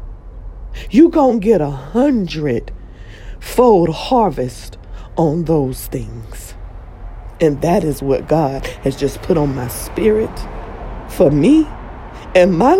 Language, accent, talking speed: English, American, 115 wpm